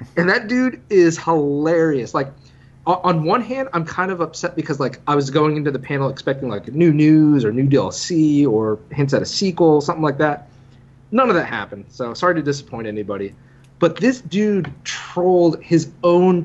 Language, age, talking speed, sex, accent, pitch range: English, 30-49, 190 wpm, male, American, 130-170 Hz